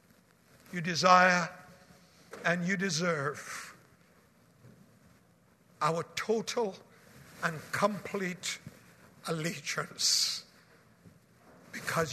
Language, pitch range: English, 180-220 Hz